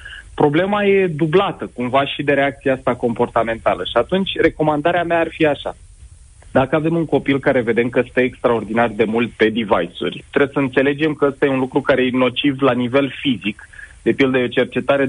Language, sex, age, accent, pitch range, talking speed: Romanian, male, 30-49, native, 120-155 Hz, 190 wpm